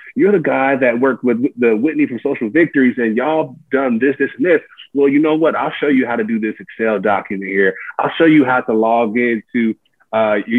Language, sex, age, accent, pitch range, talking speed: English, male, 20-39, American, 100-115 Hz, 240 wpm